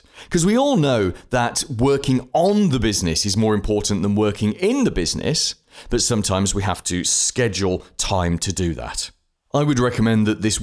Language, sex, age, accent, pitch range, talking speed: English, male, 30-49, British, 100-130 Hz, 180 wpm